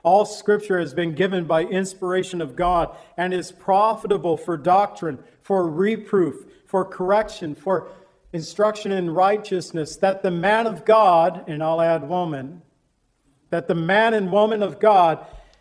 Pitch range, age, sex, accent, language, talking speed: 170-205 Hz, 50-69, male, American, English, 145 wpm